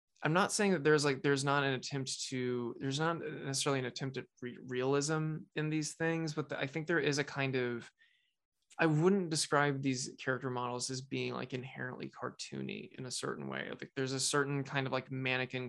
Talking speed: 200 wpm